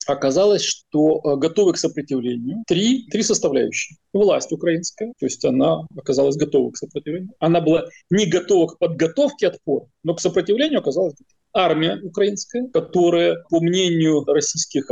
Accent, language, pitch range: native, Russian, 145-200 Hz